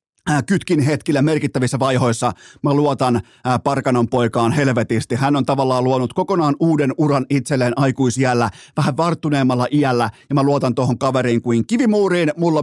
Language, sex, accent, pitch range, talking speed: Finnish, male, native, 125-155 Hz, 140 wpm